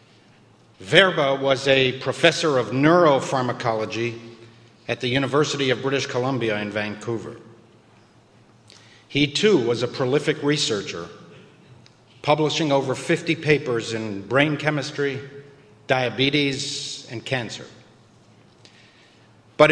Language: English